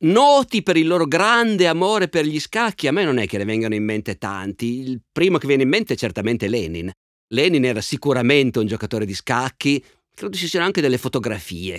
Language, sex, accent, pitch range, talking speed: Italian, male, native, 110-145 Hz, 210 wpm